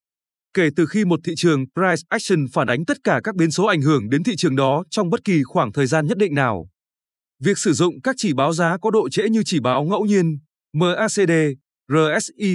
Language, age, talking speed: Vietnamese, 20-39, 225 wpm